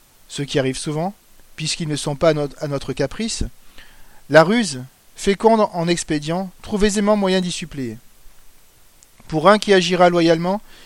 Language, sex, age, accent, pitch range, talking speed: French, male, 40-59, French, 155-195 Hz, 145 wpm